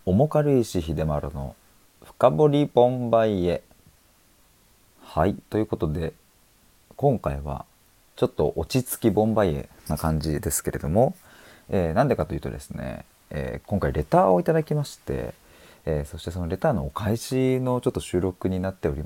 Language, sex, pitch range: Japanese, male, 75-100 Hz